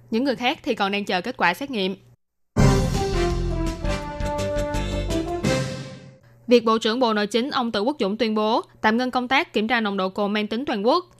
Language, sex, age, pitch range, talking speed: Vietnamese, female, 10-29, 200-250 Hz, 195 wpm